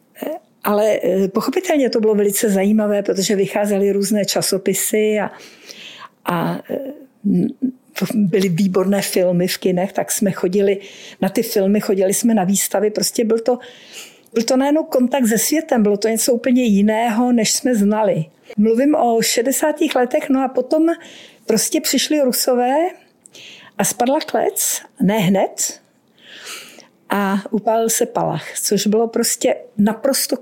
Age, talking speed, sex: 50-69, 130 wpm, female